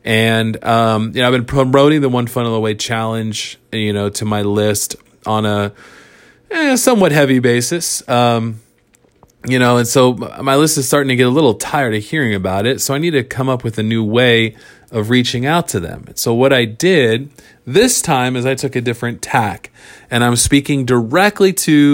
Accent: American